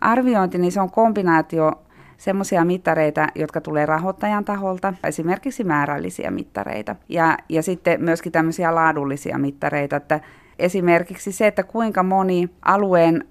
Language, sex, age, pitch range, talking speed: Finnish, female, 30-49, 155-185 Hz, 120 wpm